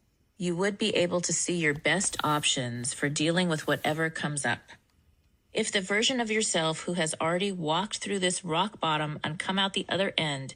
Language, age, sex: English, 30-49, female